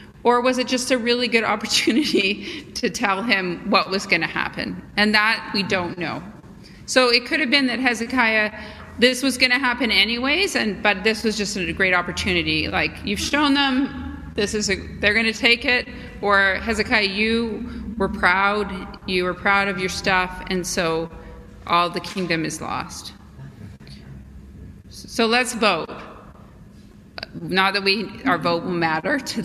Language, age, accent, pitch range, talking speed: English, 40-59, American, 185-245 Hz, 170 wpm